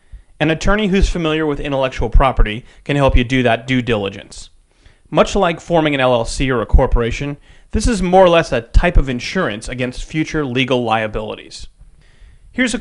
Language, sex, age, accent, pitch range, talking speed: English, male, 30-49, American, 115-170 Hz, 175 wpm